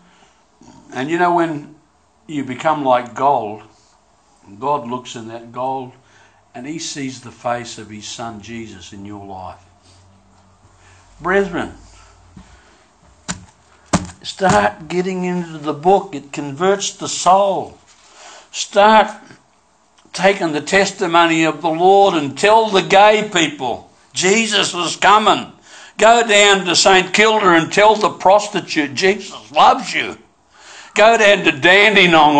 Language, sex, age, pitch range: English, male, 60-79, 130-195 Hz